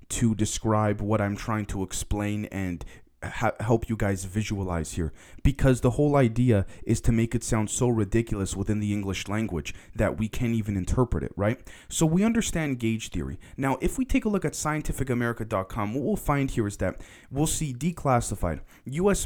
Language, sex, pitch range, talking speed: English, male, 100-130 Hz, 180 wpm